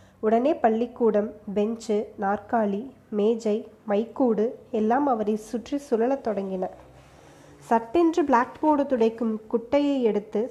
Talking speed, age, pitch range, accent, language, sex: 90 wpm, 20-39, 215-260 Hz, native, Tamil, female